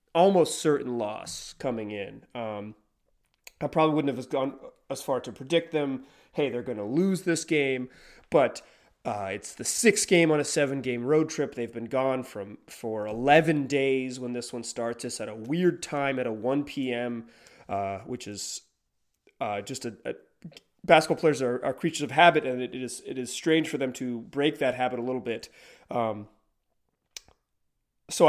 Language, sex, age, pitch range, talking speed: English, male, 30-49, 120-160 Hz, 185 wpm